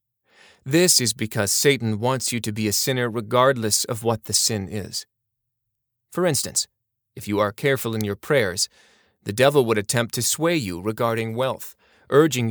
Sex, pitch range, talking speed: male, 110-130 Hz, 170 wpm